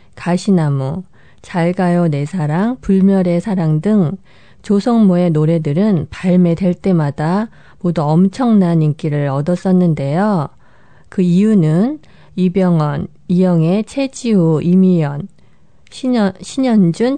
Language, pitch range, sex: Korean, 160-200 Hz, female